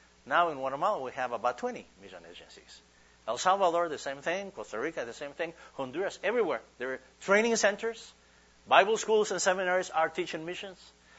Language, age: English, 60-79